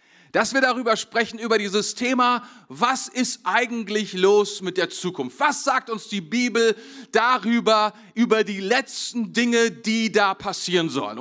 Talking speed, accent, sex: 150 wpm, German, male